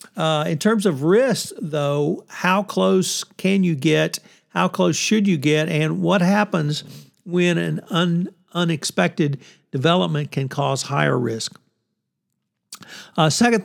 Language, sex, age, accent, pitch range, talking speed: English, male, 60-79, American, 150-185 Hz, 130 wpm